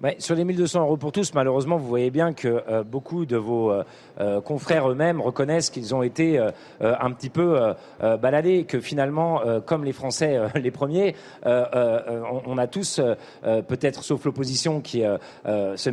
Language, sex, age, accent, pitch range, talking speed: French, male, 40-59, French, 125-155 Hz, 200 wpm